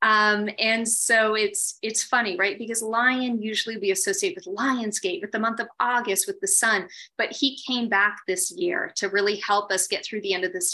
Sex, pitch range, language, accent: female, 200-240 Hz, English, American